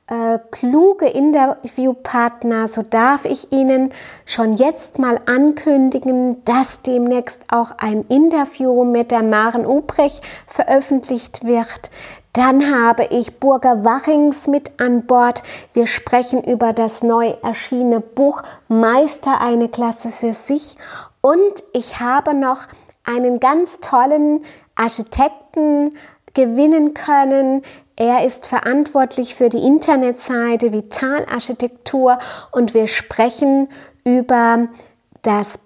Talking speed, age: 105 wpm, 30-49